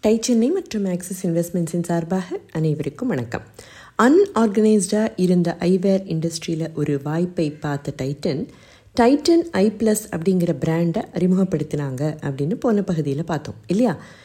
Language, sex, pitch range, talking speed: Tamil, female, 155-210 Hz, 105 wpm